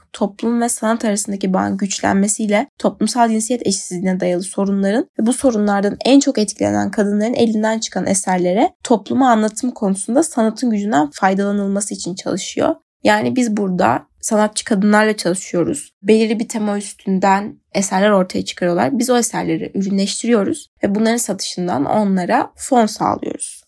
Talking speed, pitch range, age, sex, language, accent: 130 wpm, 195-235 Hz, 10-29, female, Turkish, native